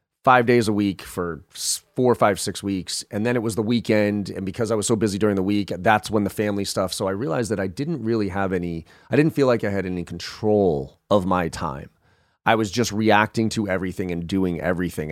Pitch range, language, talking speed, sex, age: 85-110 Hz, English, 230 wpm, male, 30-49